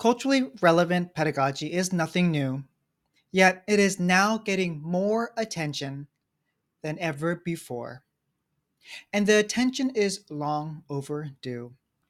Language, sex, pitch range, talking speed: English, male, 145-200 Hz, 110 wpm